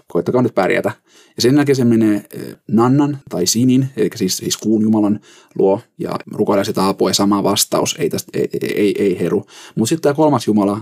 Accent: native